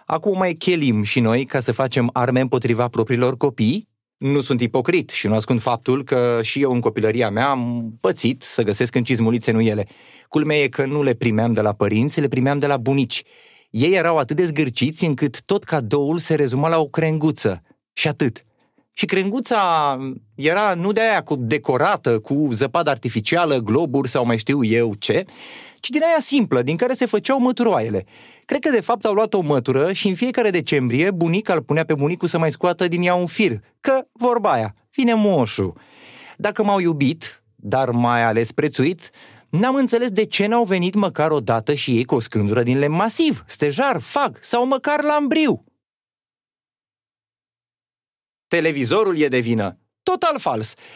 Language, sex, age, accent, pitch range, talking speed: Romanian, male, 30-49, native, 125-195 Hz, 175 wpm